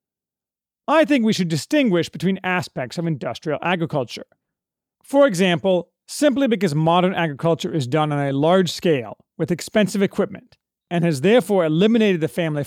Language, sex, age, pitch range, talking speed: English, male, 40-59, 155-210 Hz, 145 wpm